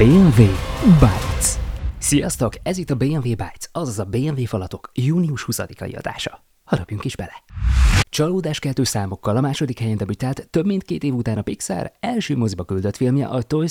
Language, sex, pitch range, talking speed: Hungarian, male, 100-135 Hz, 160 wpm